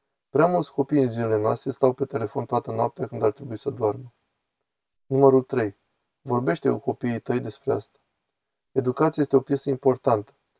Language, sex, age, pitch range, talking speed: Romanian, male, 20-39, 125-140 Hz, 165 wpm